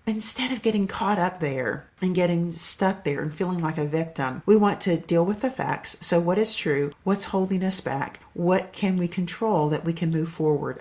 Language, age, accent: English, 50-69, American